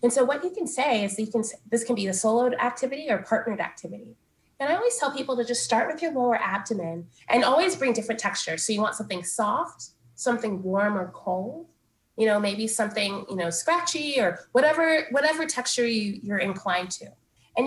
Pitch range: 185-245 Hz